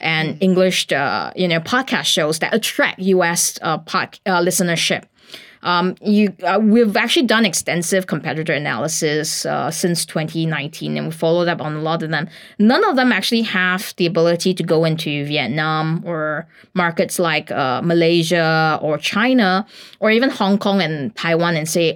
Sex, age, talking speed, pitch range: female, 20-39, 165 wpm, 165-215 Hz